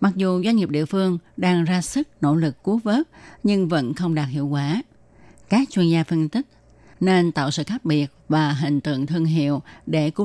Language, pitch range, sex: Vietnamese, 150-195 Hz, female